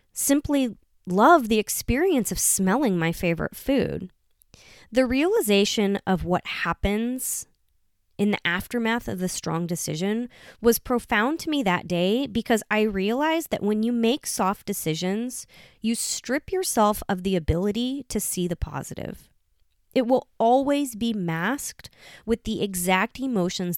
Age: 20-39